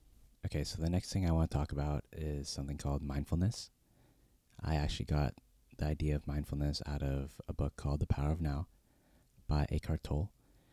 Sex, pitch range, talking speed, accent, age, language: male, 70-80 Hz, 185 wpm, American, 20-39, English